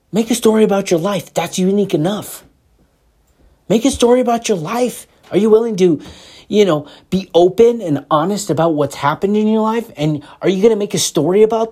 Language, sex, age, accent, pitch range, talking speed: English, male, 30-49, American, 180-245 Hz, 205 wpm